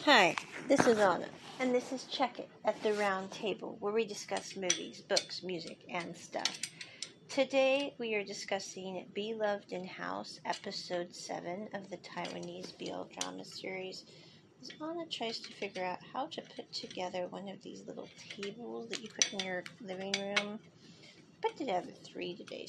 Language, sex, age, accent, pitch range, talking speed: English, female, 40-59, American, 190-240 Hz, 170 wpm